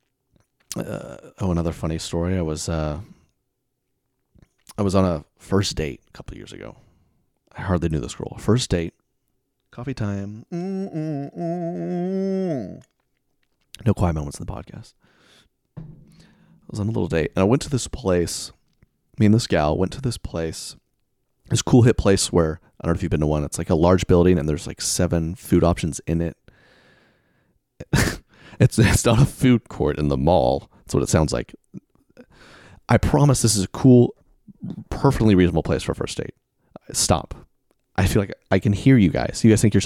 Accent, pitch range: American, 90-125 Hz